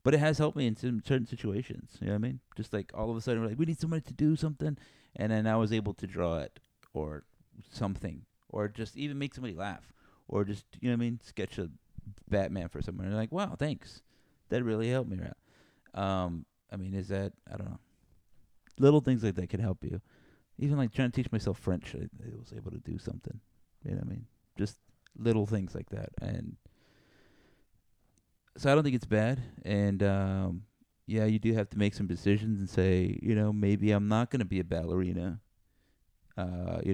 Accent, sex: American, male